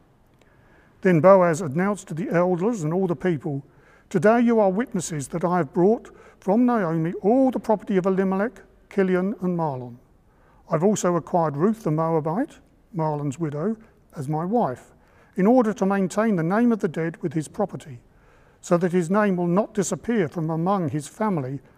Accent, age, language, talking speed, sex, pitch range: British, 50-69, English, 175 wpm, male, 160-210 Hz